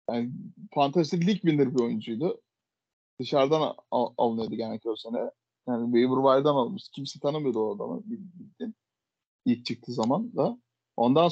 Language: Turkish